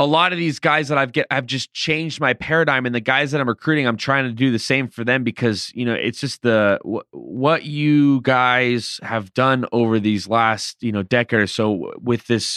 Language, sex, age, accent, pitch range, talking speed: English, male, 20-39, American, 115-150 Hz, 230 wpm